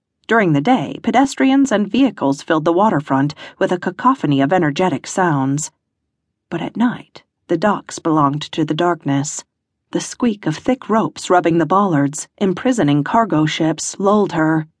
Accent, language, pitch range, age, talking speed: American, English, 150-230 Hz, 40-59, 150 wpm